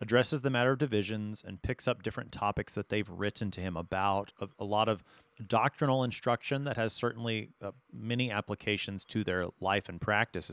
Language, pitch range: English, 100-125 Hz